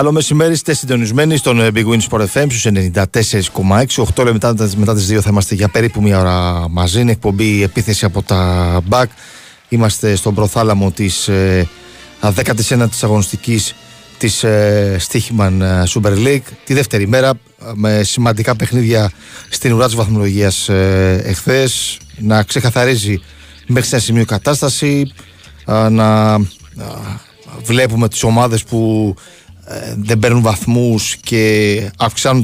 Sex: male